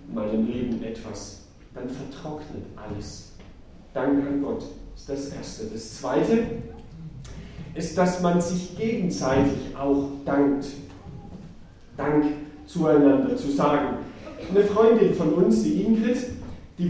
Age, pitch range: 40-59, 135-185 Hz